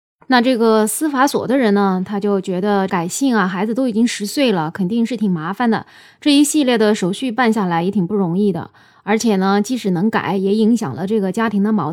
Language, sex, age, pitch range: Chinese, female, 20-39, 185-240 Hz